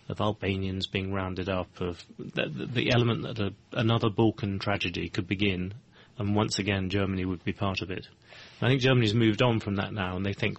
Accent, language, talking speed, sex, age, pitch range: British, English, 200 wpm, male, 30-49, 95-110 Hz